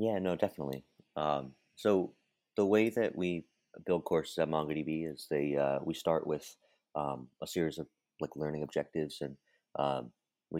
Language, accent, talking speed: English, American, 165 wpm